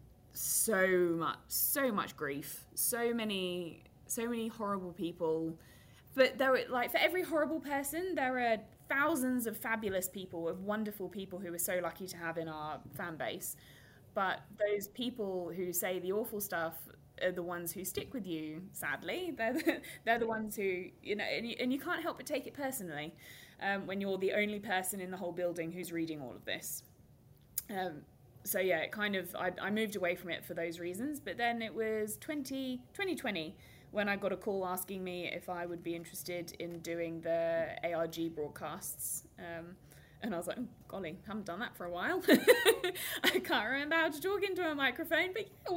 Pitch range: 170-245 Hz